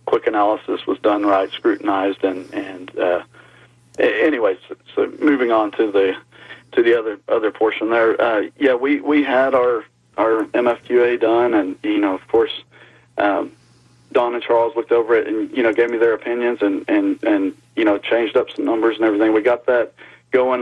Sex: male